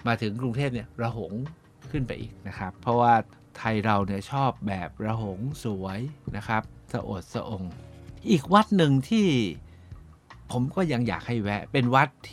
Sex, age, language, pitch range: male, 60-79, Thai, 100-130 Hz